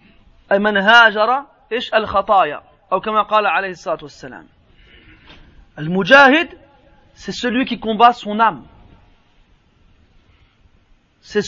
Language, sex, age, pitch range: French, male, 30-49, 210-285 Hz